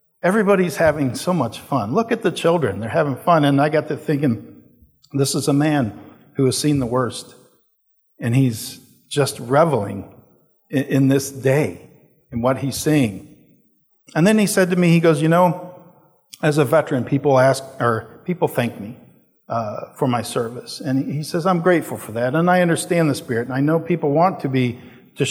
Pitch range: 120-155 Hz